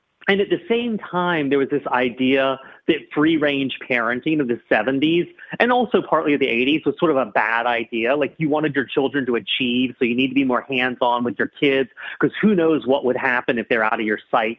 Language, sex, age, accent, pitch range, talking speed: English, male, 30-49, American, 115-145 Hz, 230 wpm